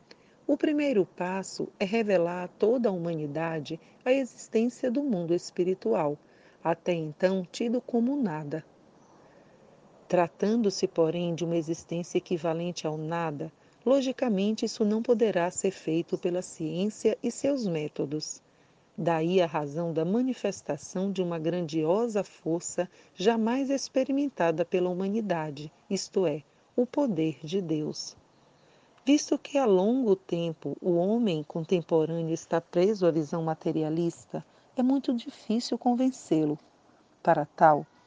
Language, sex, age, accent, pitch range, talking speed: Portuguese, female, 40-59, Brazilian, 165-230 Hz, 120 wpm